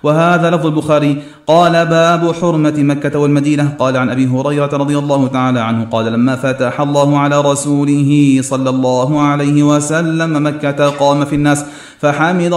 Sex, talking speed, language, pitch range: male, 150 wpm, Arabic, 145-165 Hz